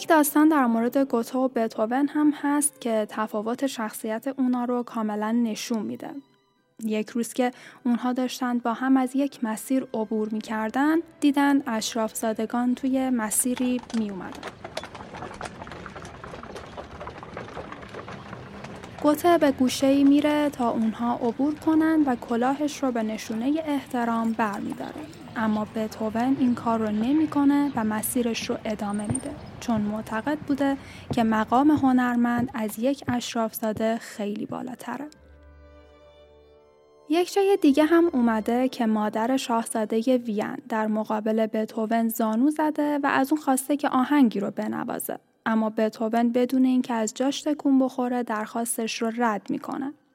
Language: Persian